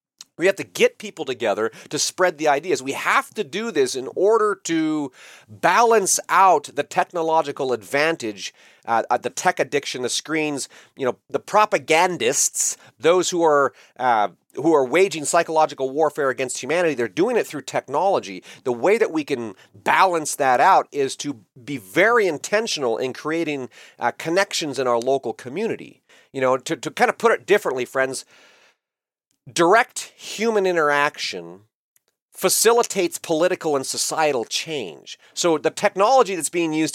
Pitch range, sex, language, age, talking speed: 150-220 Hz, male, English, 40-59, 155 wpm